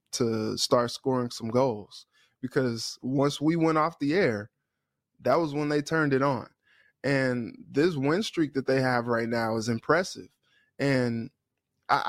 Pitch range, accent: 120-140 Hz, American